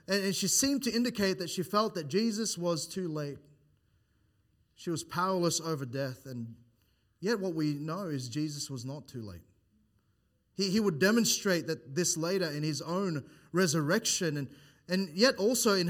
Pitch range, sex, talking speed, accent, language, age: 140-185 Hz, male, 170 wpm, Australian, English, 20-39